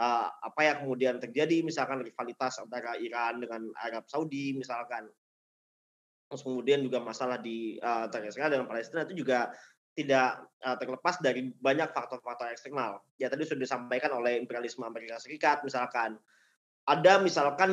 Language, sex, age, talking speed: Indonesian, male, 20-39, 135 wpm